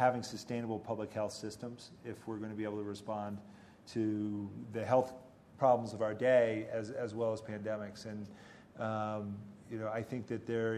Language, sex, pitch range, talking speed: English, male, 110-120 Hz, 180 wpm